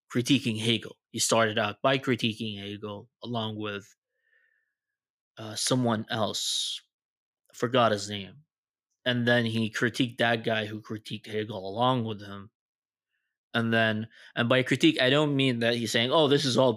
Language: Arabic